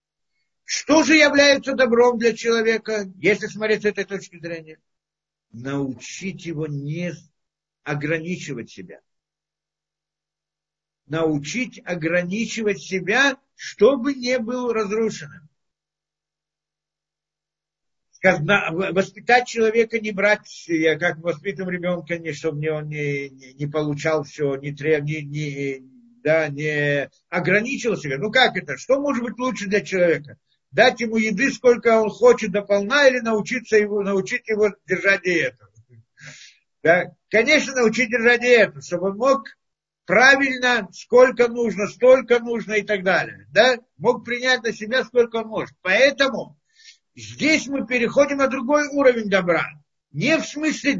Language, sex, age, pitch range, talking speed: Russian, male, 50-69, 170-245 Hz, 115 wpm